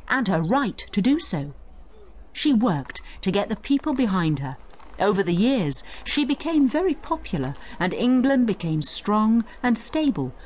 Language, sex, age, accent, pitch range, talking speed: English, female, 50-69, British, 165-255 Hz, 155 wpm